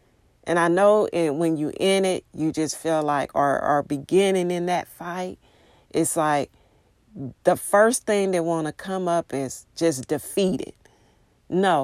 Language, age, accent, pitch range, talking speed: English, 40-59, American, 155-200 Hz, 155 wpm